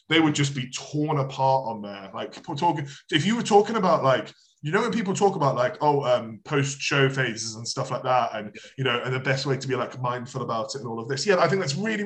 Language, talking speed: English, 265 wpm